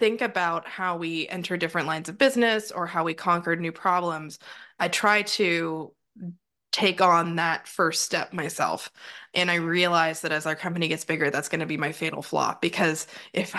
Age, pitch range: 20-39, 170-200 Hz